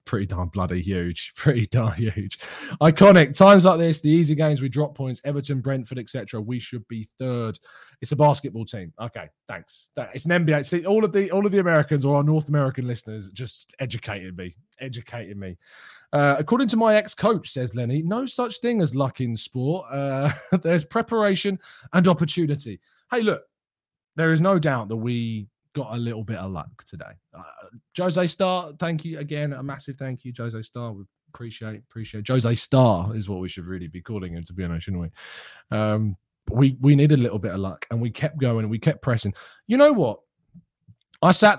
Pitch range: 105-150 Hz